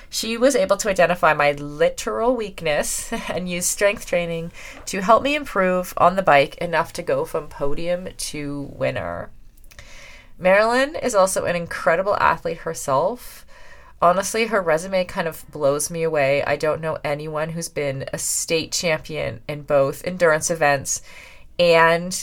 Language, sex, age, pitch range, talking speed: English, female, 30-49, 155-200 Hz, 150 wpm